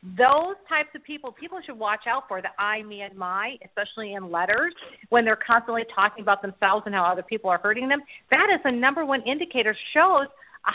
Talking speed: 210 wpm